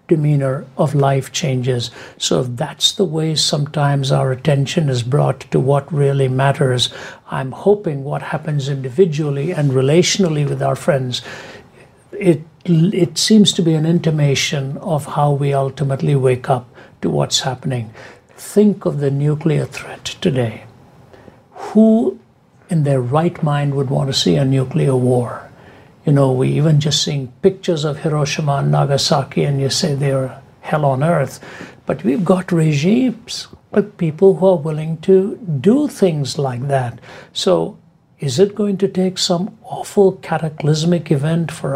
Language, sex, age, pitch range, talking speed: English, male, 60-79, 135-175 Hz, 150 wpm